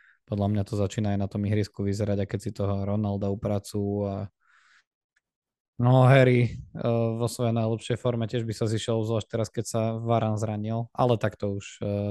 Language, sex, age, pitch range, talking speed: Slovak, male, 20-39, 110-125 Hz, 195 wpm